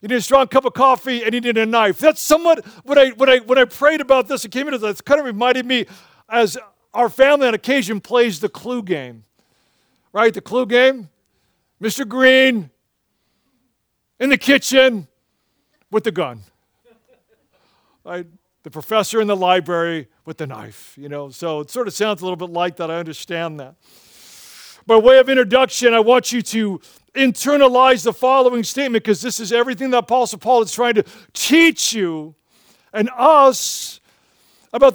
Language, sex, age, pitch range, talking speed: English, male, 50-69, 195-265 Hz, 180 wpm